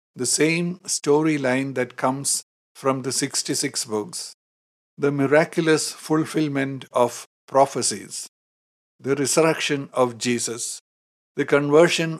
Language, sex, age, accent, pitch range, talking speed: English, male, 60-79, Indian, 125-160 Hz, 100 wpm